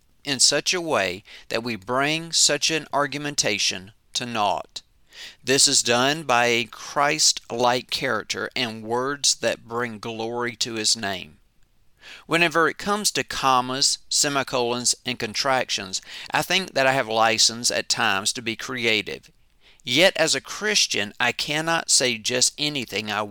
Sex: male